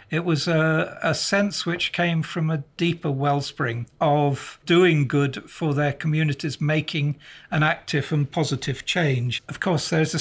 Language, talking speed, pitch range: English, 160 wpm, 135-165 Hz